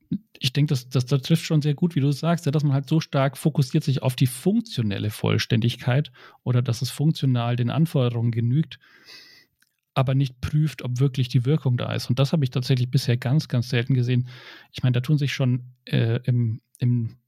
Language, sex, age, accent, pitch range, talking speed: German, male, 40-59, German, 120-145 Hz, 200 wpm